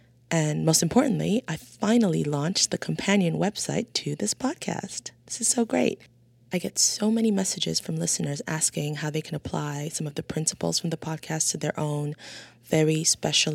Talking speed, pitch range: 175 wpm, 145-175 Hz